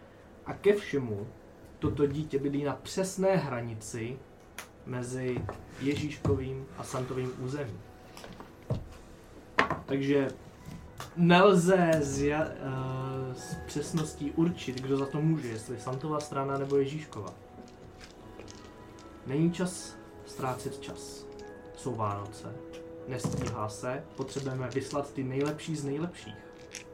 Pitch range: 115-150 Hz